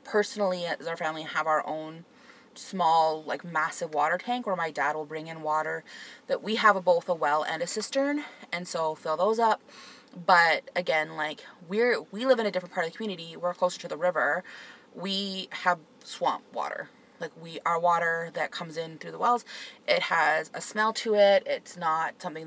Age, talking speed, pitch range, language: 20-39, 200 wpm, 165-235 Hz, English